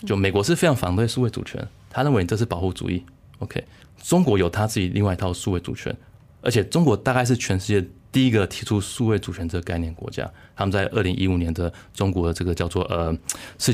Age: 20-39